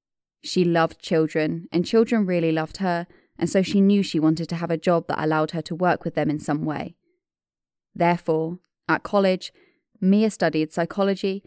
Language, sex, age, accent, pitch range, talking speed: English, female, 20-39, British, 165-195 Hz, 180 wpm